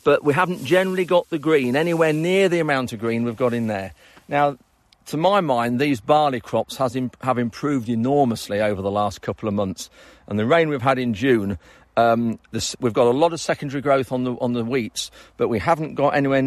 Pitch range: 115-145 Hz